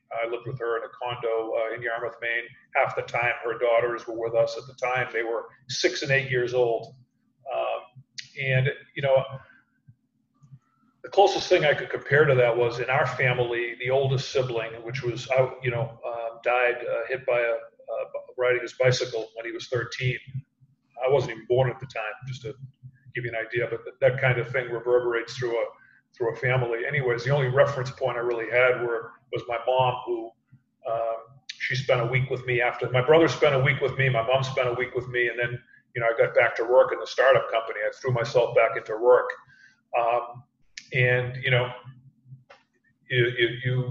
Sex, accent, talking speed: male, American, 205 wpm